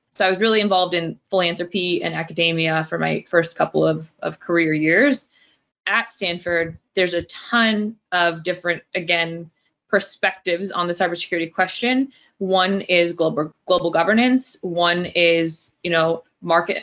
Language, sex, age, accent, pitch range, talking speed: English, female, 20-39, American, 170-195 Hz, 145 wpm